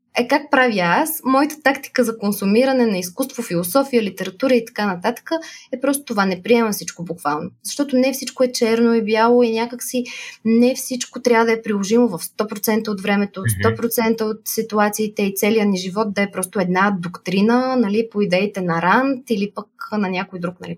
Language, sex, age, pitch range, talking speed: Bulgarian, female, 20-39, 195-255 Hz, 185 wpm